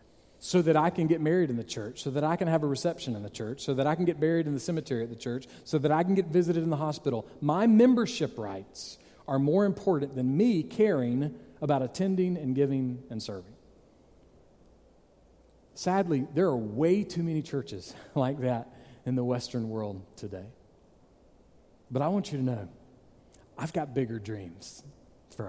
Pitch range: 125-175 Hz